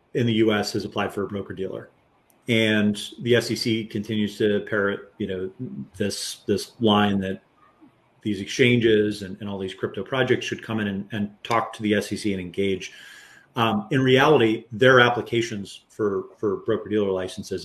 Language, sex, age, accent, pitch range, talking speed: English, male, 40-59, American, 100-115 Hz, 170 wpm